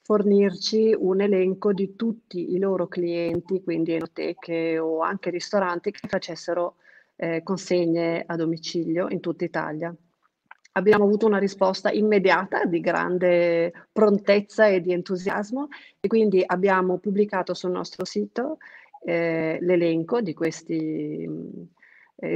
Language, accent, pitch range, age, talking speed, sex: Italian, native, 170-200 Hz, 40-59, 120 wpm, female